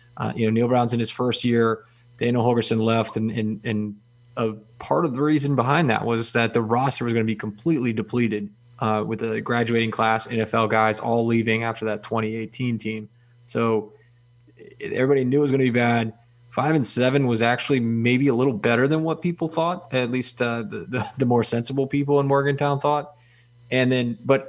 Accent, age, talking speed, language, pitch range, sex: American, 20-39, 200 wpm, English, 110-125 Hz, male